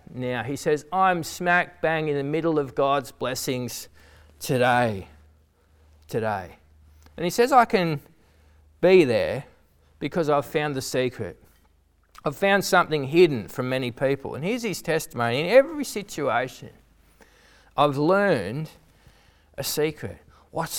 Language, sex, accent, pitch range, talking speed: English, male, Australian, 140-225 Hz, 130 wpm